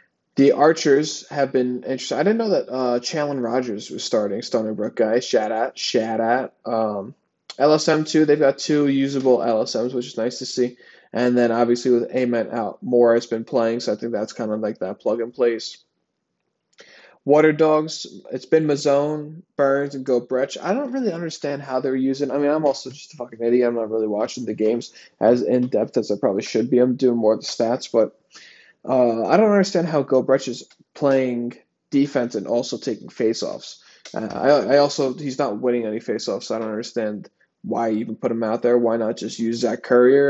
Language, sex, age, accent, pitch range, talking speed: English, male, 20-39, American, 120-145 Hz, 200 wpm